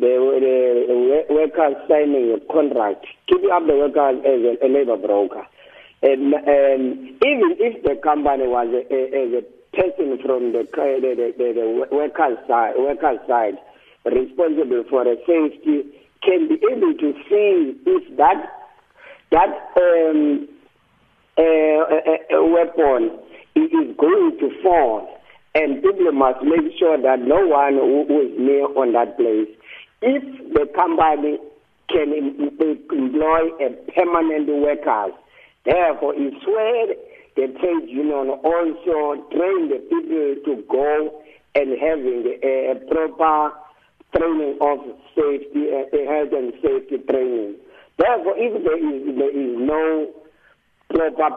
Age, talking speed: 50-69, 130 wpm